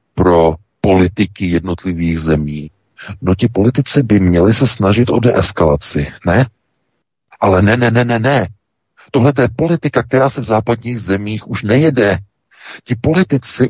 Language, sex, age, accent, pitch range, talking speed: Czech, male, 50-69, native, 85-120 Hz, 140 wpm